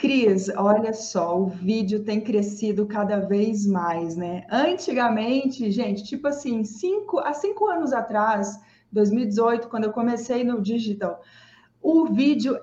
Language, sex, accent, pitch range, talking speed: Portuguese, female, Brazilian, 220-290 Hz, 130 wpm